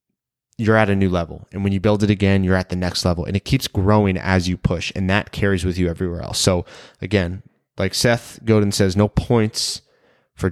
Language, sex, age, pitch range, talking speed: English, male, 20-39, 90-110 Hz, 220 wpm